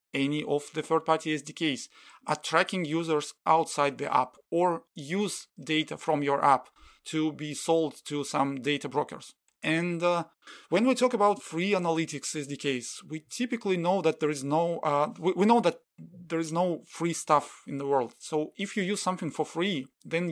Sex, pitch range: male, 145-170 Hz